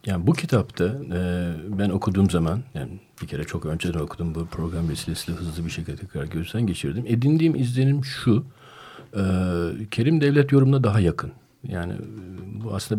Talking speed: 160 wpm